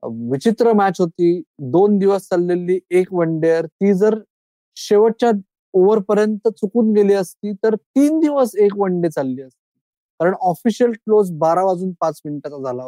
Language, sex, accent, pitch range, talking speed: Marathi, male, native, 170-210 Hz, 155 wpm